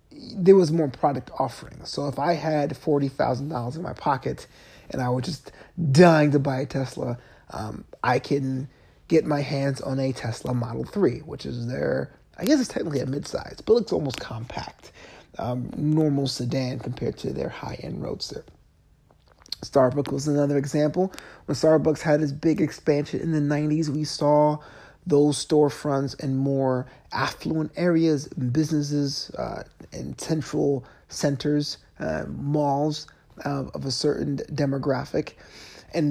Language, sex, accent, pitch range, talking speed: English, male, American, 135-160 Hz, 145 wpm